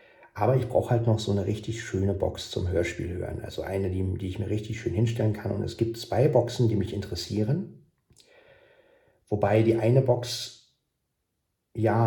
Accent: German